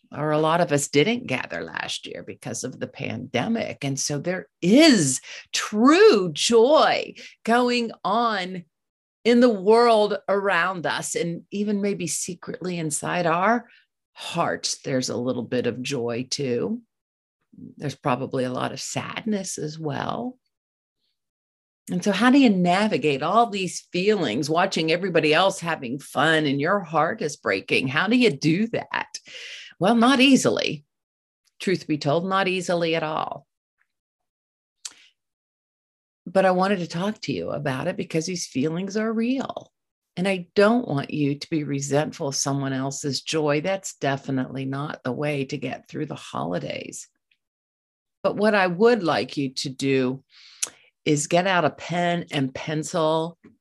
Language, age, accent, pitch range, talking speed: English, 50-69, American, 145-200 Hz, 150 wpm